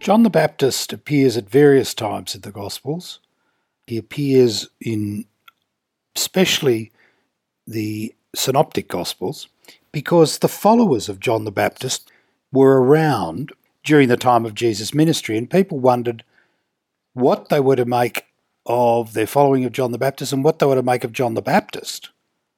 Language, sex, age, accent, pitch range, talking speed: English, male, 60-79, Australian, 115-140 Hz, 150 wpm